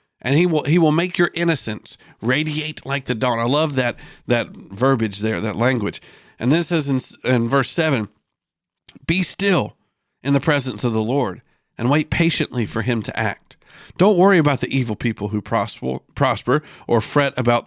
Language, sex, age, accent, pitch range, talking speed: English, male, 50-69, American, 120-170 Hz, 180 wpm